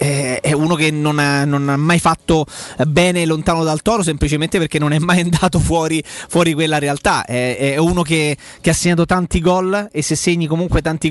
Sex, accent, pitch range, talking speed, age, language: male, native, 145-175 Hz, 200 wpm, 30-49, Italian